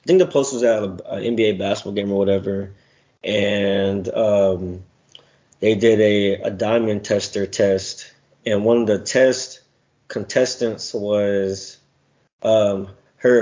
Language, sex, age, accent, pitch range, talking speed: English, male, 20-39, American, 100-115 Hz, 135 wpm